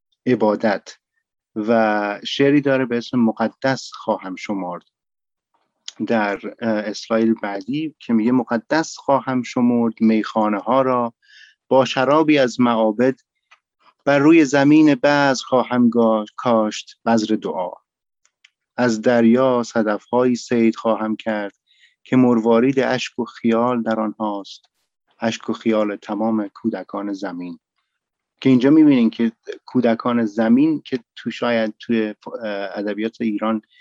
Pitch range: 110-130 Hz